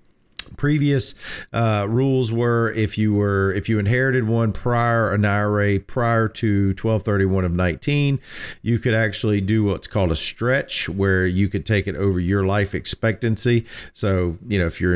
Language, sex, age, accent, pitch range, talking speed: English, male, 40-59, American, 100-130 Hz, 165 wpm